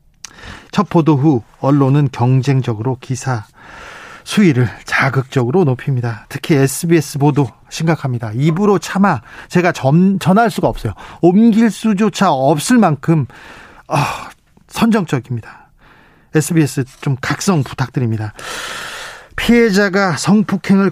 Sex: male